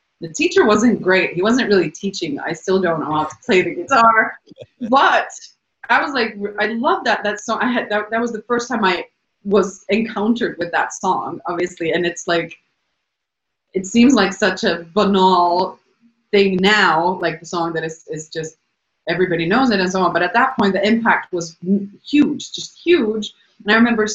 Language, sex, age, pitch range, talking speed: English, female, 30-49, 170-215 Hz, 195 wpm